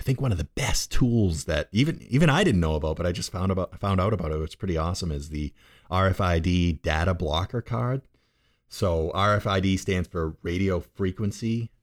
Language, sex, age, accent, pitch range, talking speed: English, male, 30-49, American, 80-100 Hz, 195 wpm